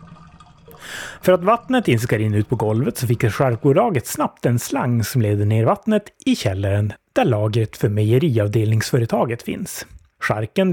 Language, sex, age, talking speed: Swedish, male, 30-49, 145 wpm